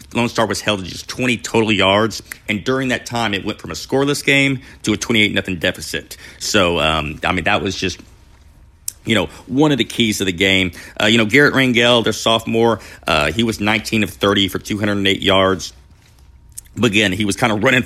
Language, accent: English, American